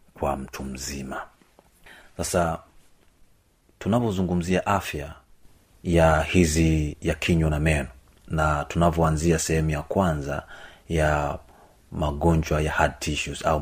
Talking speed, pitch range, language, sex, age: 100 wpm, 75-85 Hz, Swahili, male, 40-59